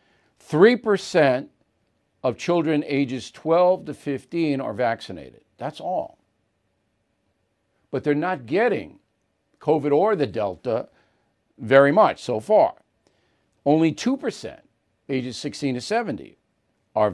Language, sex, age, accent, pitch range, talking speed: English, male, 50-69, American, 120-165 Hz, 100 wpm